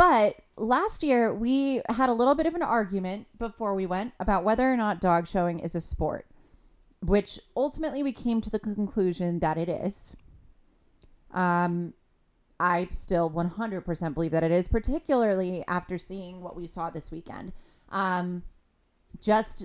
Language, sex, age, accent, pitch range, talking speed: English, female, 30-49, American, 165-210 Hz, 155 wpm